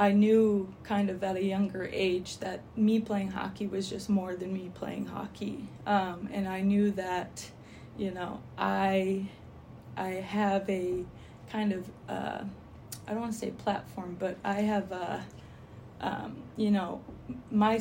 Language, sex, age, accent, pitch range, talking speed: English, female, 20-39, American, 190-215 Hz, 160 wpm